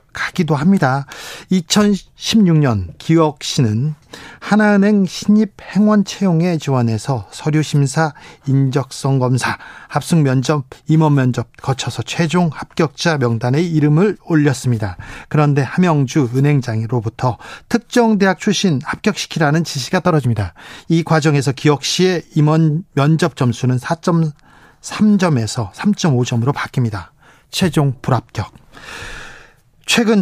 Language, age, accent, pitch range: Korean, 40-59, native, 130-180 Hz